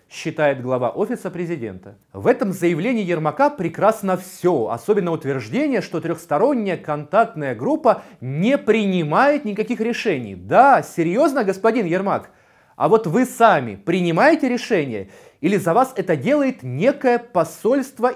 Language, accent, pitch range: Russian, native, 140-215 Hz